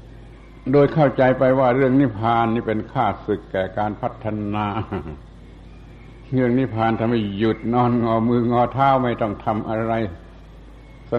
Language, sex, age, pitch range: Thai, male, 70-89, 105-125 Hz